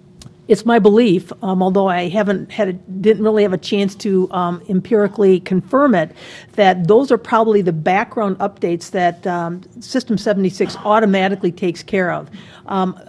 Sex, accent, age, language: female, American, 50-69, English